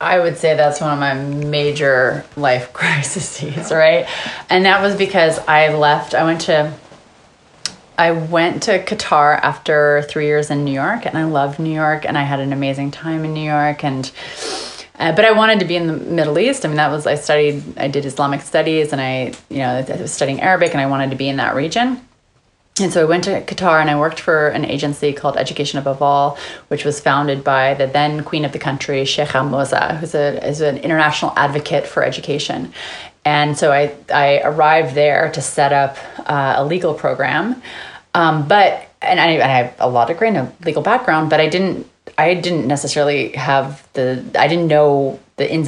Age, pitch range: 30-49, 145-175 Hz